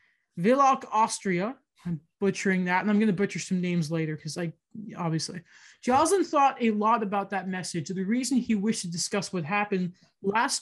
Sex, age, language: male, 20-39, English